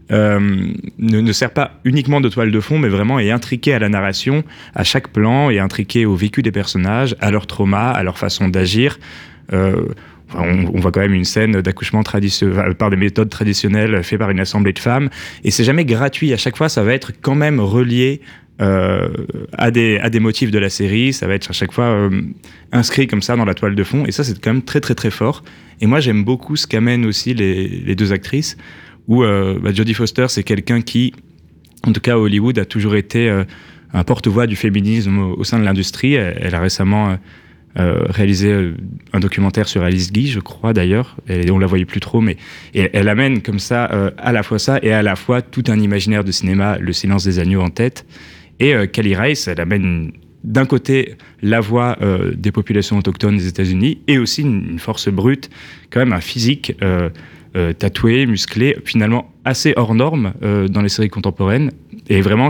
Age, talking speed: 20-39, 215 wpm